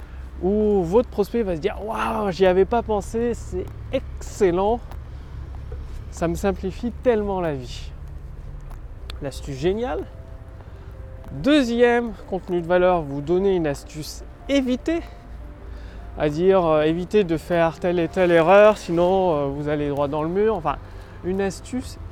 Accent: French